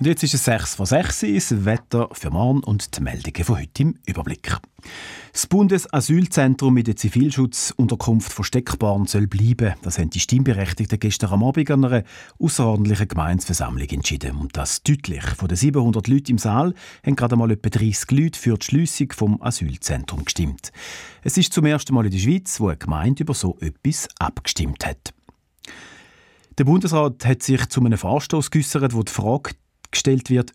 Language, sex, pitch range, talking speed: German, male, 100-135 Hz, 175 wpm